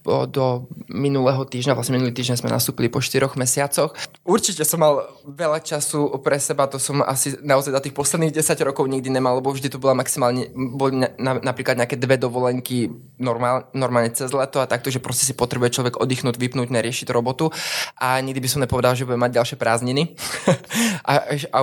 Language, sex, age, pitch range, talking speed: Slovak, male, 20-39, 130-150 Hz, 190 wpm